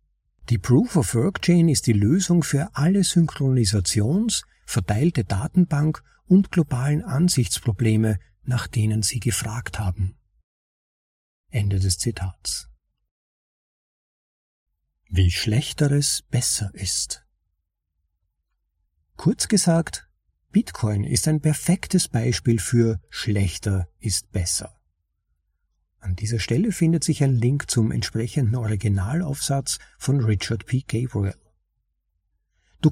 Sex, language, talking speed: male, German, 95 wpm